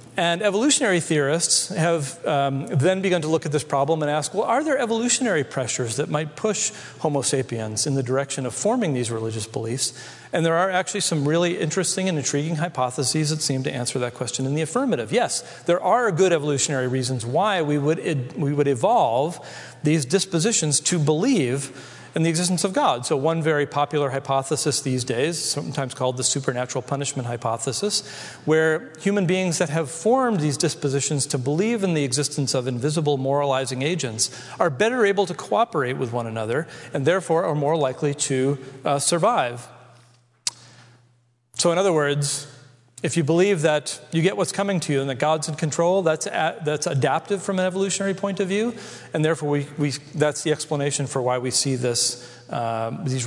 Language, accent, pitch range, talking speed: English, American, 130-175 Hz, 180 wpm